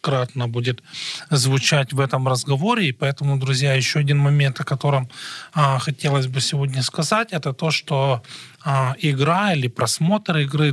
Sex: male